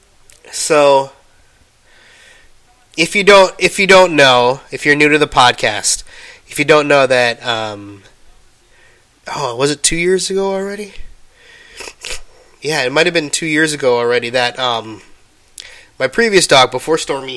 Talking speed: 150 wpm